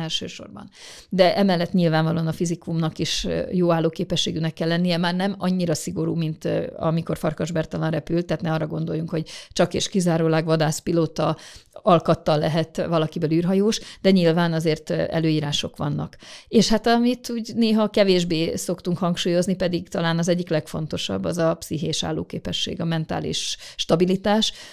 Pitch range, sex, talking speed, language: 160-190 Hz, female, 140 wpm, Hungarian